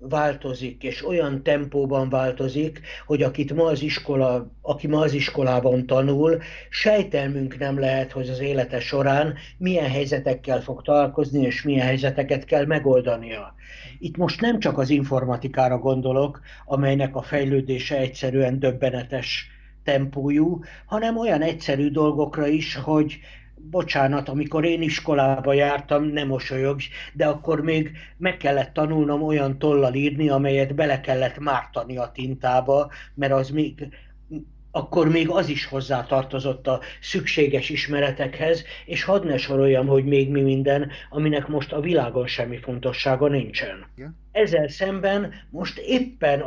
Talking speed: 135 wpm